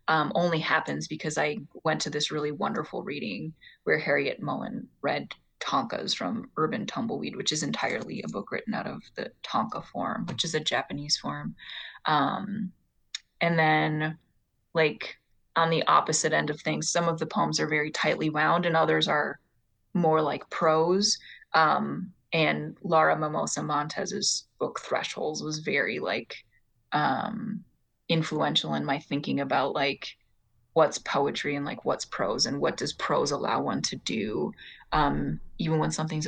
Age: 20-39